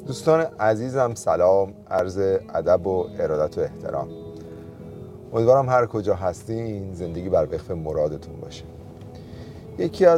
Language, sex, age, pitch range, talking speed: Persian, male, 30-49, 90-115 Hz, 110 wpm